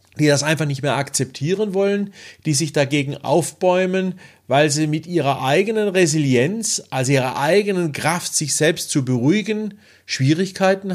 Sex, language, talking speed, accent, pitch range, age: male, German, 140 wpm, German, 125-170 Hz, 40-59